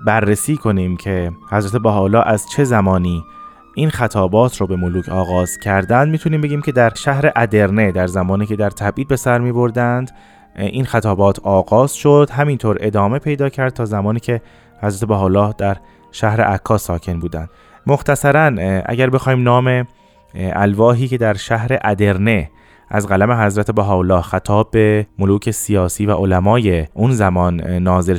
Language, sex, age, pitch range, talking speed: Persian, male, 20-39, 95-125 Hz, 145 wpm